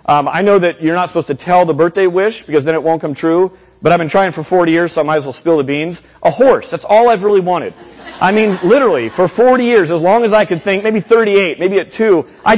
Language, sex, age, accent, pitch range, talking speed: English, male, 30-49, American, 150-195 Hz, 270 wpm